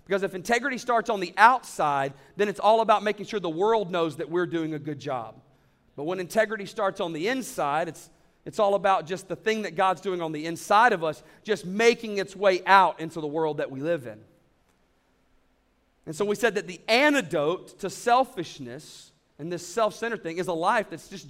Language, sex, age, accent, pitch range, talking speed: English, male, 40-59, American, 165-225 Hz, 210 wpm